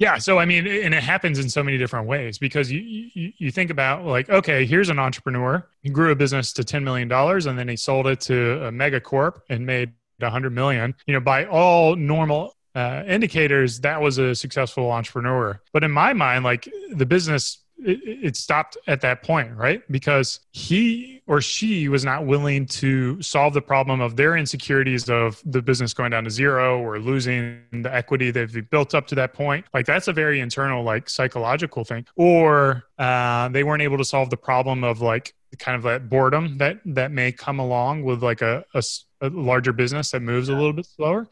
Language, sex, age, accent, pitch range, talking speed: English, male, 20-39, American, 125-155 Hz, 205 wpm